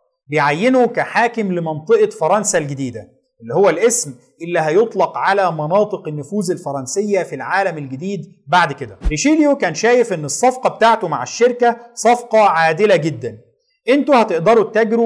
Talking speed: 130 wpm